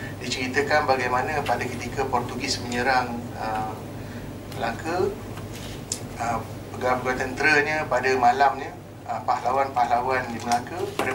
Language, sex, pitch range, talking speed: Malay, male, 120-135 Hz, 95 wpm